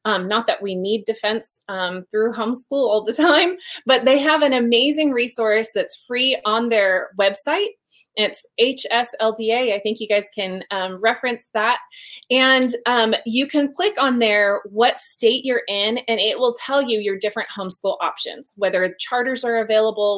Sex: female